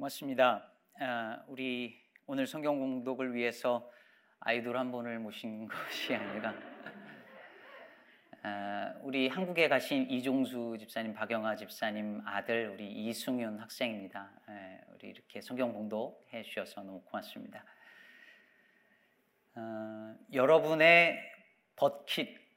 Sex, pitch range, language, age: male, 115-150 Hz, Korean, 40-59